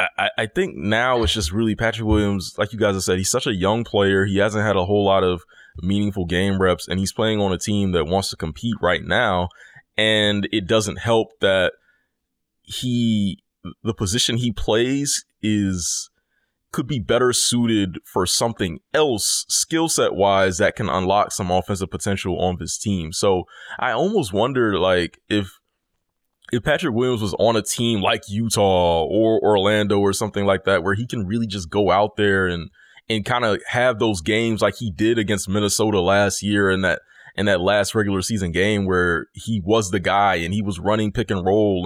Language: English